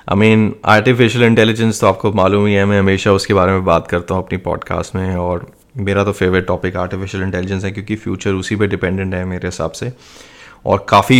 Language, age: Hindi, 20-39